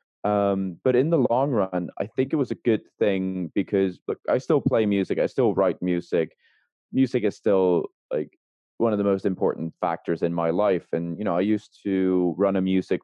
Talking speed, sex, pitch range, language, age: 205 wpm, male, 85-105 Hz, English, 20-39